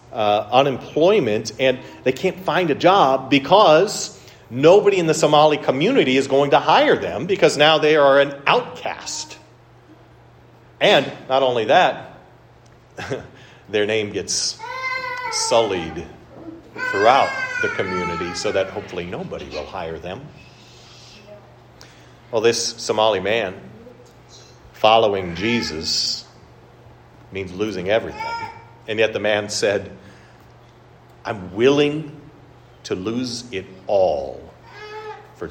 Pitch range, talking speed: 120-195 Hz, 110 wpm